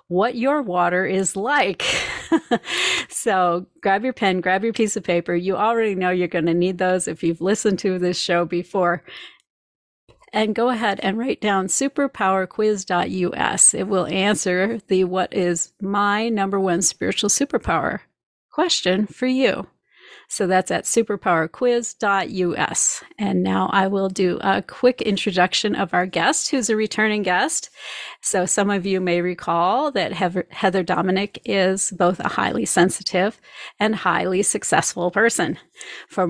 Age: 40-59